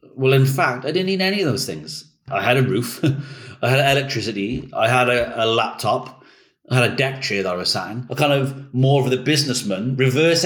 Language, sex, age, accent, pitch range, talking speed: English, male, 40-59, British, 120-140 Hz, 230 wpm